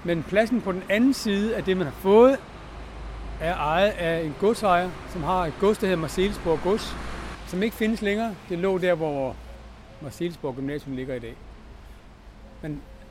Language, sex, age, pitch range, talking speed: Danish, male, 60-79, 135-195 Hz, 175 wpm